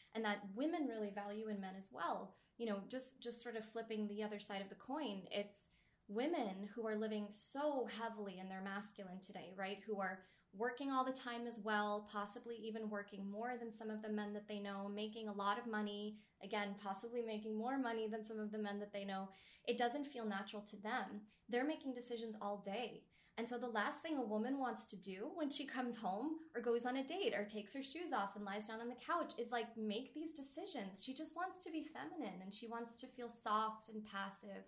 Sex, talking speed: female, 230 wpm